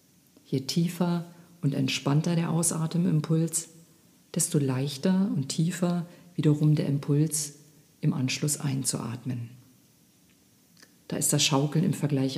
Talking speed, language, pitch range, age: 105 wpm, German, 145-175 Hz, 50-69